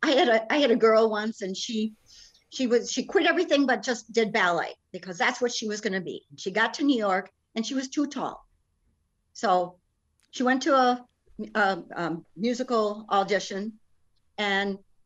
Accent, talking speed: American, 185 wpm